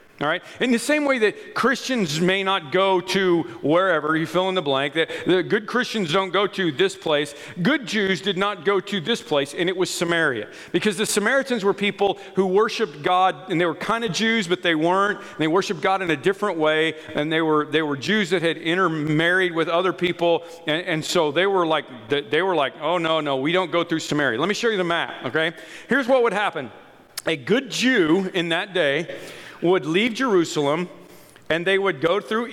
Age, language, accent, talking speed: 40-59, English, American, 220 wpm